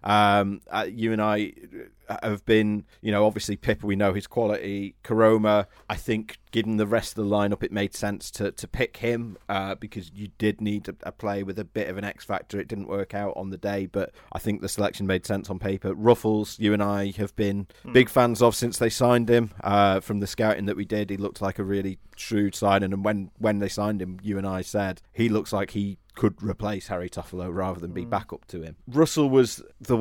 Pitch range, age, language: 100-110 Hz, 30-49, English